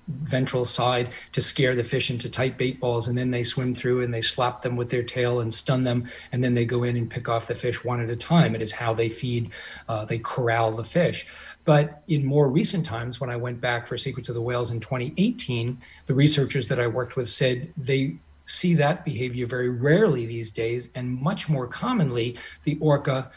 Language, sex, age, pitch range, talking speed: English, male, 40-59, 120-145 Hz, 220 wpm